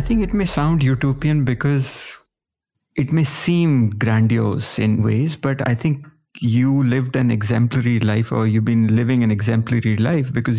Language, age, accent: English, 50-69, Indian